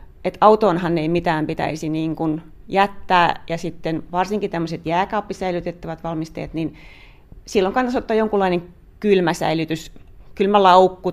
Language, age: Finnish, 30-49